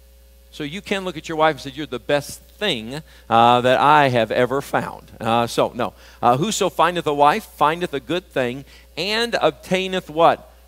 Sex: male